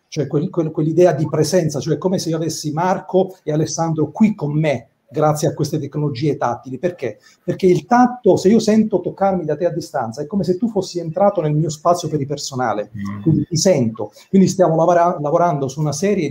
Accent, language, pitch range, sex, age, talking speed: native, Italian, 130-175 Hz, male, 40-59, 195 wpm